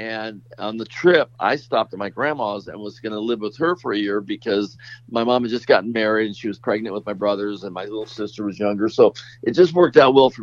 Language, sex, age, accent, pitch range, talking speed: English, male, 50-69, American, 110-125 Hz, 265 wpm